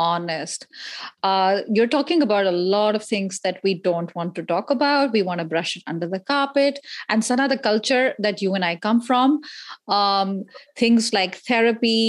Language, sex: English, female